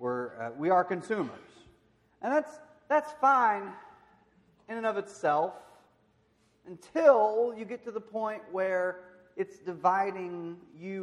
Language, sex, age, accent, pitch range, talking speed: English, male, 30-49, American, 125-175 Hz, 125 wpm